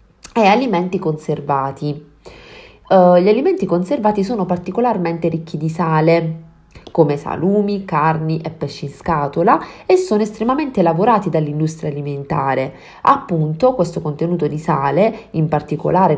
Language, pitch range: Italian, 155-200 Hz